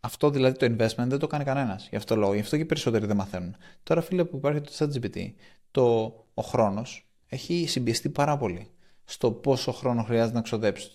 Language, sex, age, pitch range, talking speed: Greek, male, 20-39, 110-145 Hz, 195 wpm